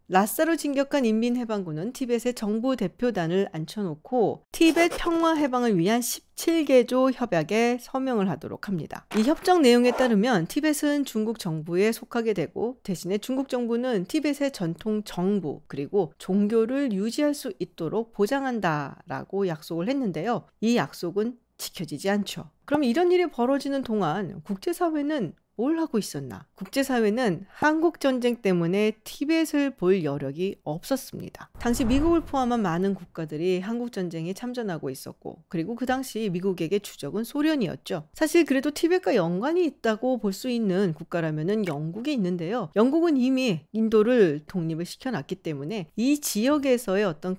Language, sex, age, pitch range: Korean, female, 40-59, 185-265 Hz